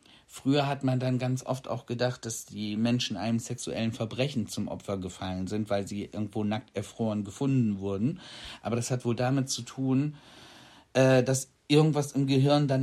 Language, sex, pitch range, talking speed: German, male, 115-140 Hz, 175 wpm